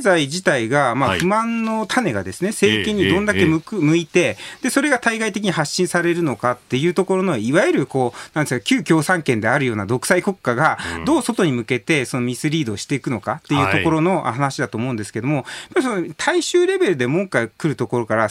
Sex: male